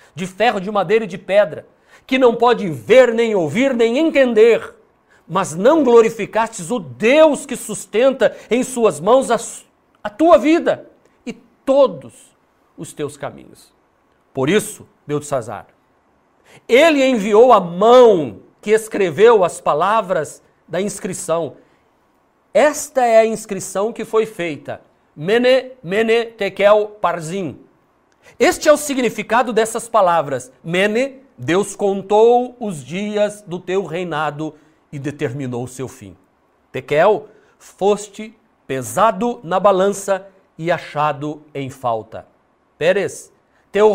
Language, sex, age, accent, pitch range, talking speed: Portuguese, male, 50-69, Brazilian, 170-240 Hz, 125 wpm